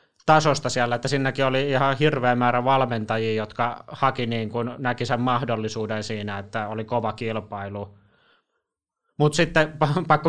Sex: male